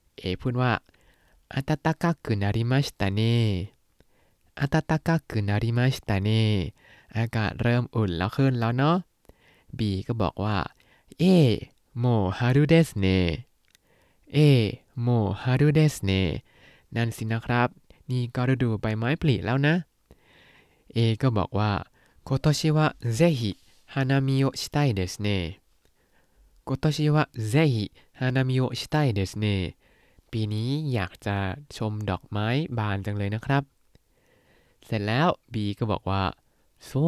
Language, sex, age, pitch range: Thai, male, 20-39, 100-135 Hz